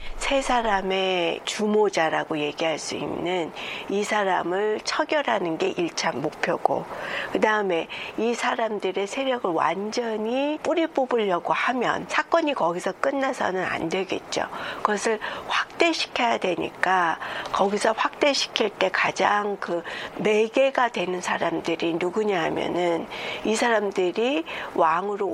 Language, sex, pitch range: Korean, female, 190-260 Hz